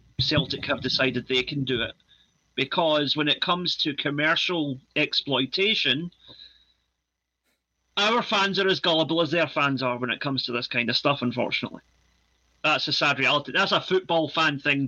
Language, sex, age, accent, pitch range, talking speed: English, male, 40-59, British, 130-170 Hz, 165 wpm